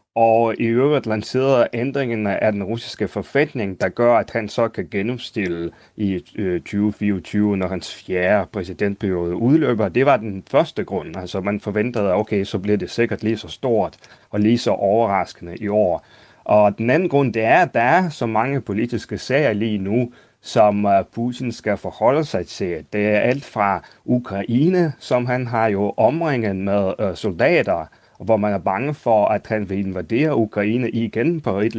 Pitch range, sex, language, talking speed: 95-115 Hz, male, Danish, 175 wpm